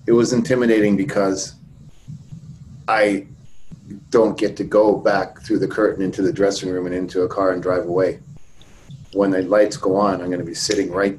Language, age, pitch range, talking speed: English, 30-49, 100-140 Hz, 180 wpm